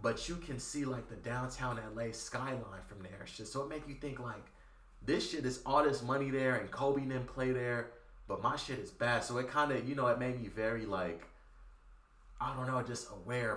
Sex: male